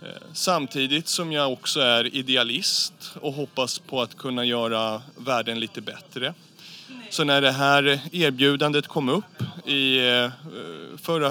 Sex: male